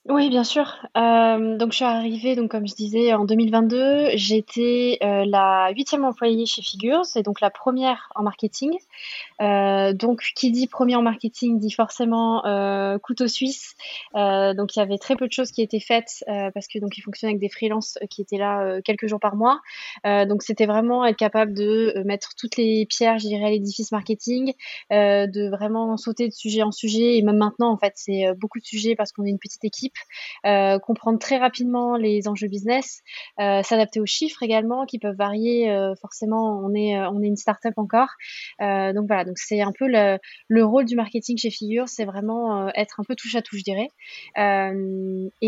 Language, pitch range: French, 205-235 Hz